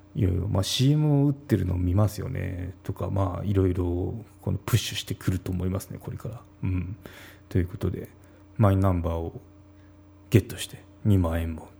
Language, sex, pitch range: Japanese, male, 95-120 Hz